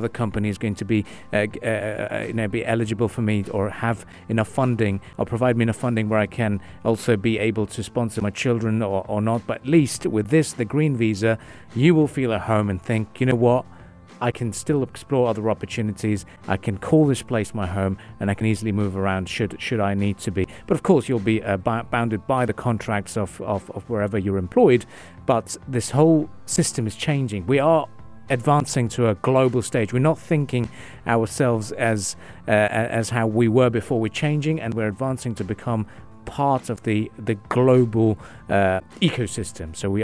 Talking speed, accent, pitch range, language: 200 wpm, British, 105-130 Hz, English